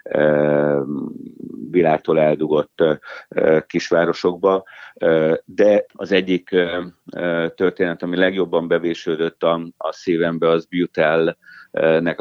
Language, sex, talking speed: Hungarian, male, 70 wpm